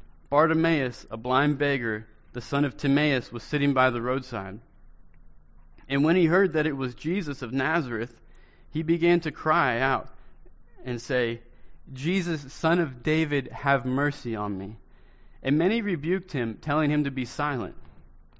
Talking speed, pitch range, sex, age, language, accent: 155 wpm, 100-150 Hz, male, 30-49, English, American